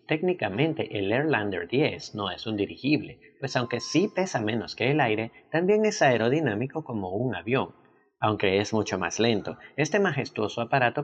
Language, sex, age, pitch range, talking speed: Spanish, male, 40-59, 105-145 Hz, 165 wpm